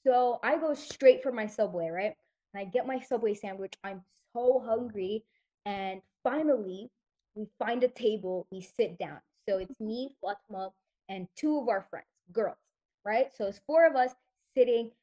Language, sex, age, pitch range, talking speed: English, female, 20-39, 220-300 Hz, 170 wpm